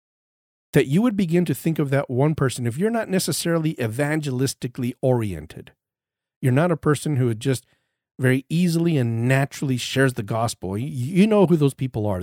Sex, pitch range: male, 120-165 Hz